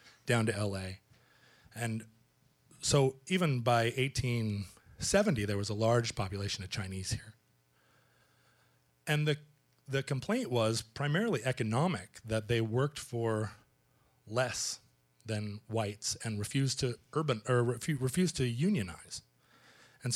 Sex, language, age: male, English, 30-49